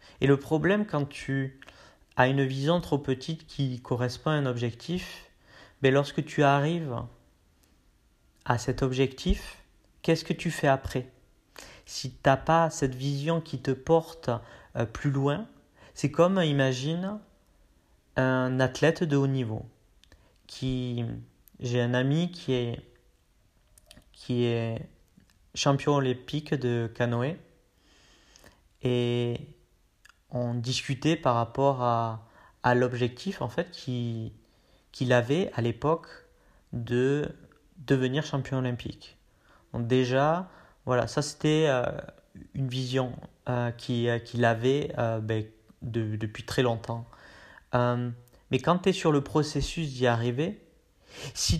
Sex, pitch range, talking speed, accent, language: male, 120-150 Hz, 120 wpm, French, French